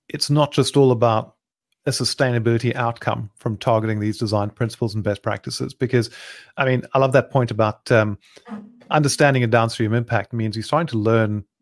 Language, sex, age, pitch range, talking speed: English, male, 30-49, 110-135 Hz, 175 wpm